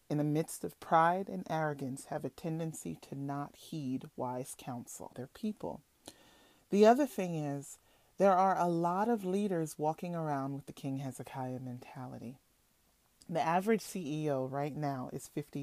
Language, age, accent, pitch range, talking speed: English, 30-49, American, 145-195 Hz, 155 wpm